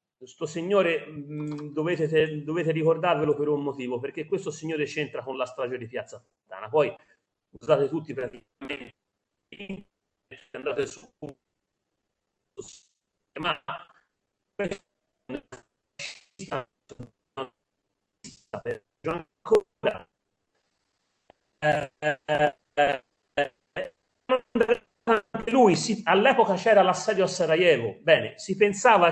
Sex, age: male, 40-59